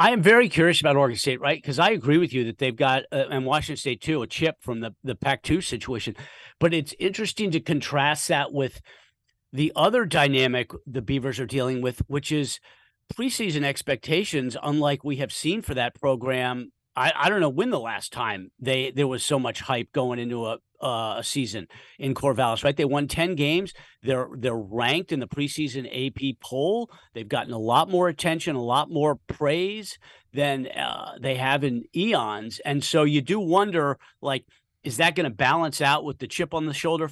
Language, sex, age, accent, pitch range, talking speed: English, male, 50-69, American, 125-155 Hz, 200 wpm